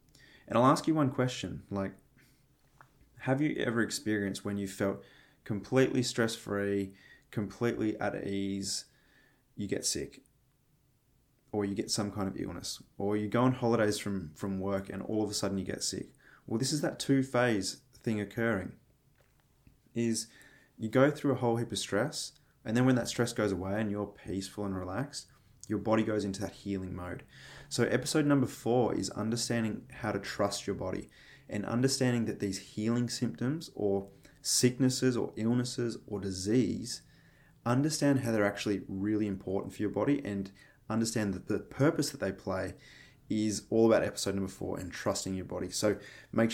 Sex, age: male, 20-39